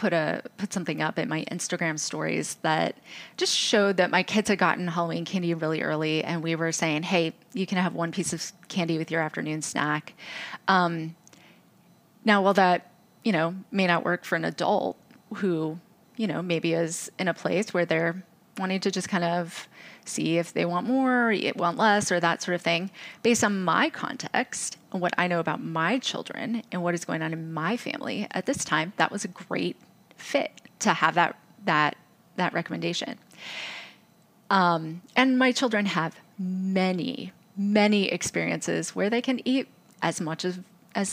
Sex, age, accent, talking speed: female, 30-49, American, 185 wpm